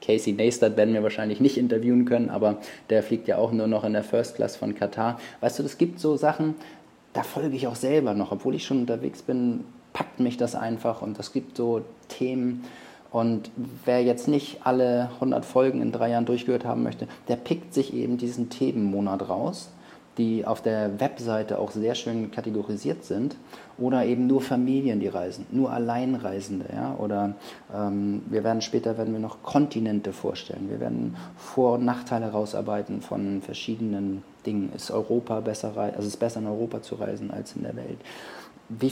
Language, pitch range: German, 100-125 Hz